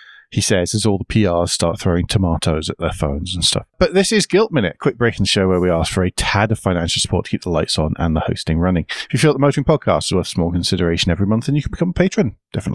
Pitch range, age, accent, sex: 85-115 Hz, 40-59, British, male